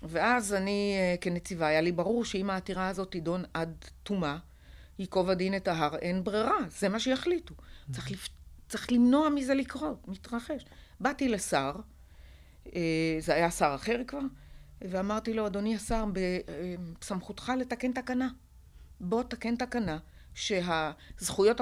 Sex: female